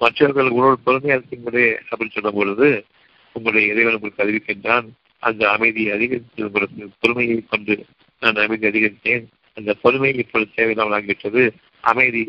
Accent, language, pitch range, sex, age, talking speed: native, Tamil, 105-120 Hz, male, 50-69, 65 wpm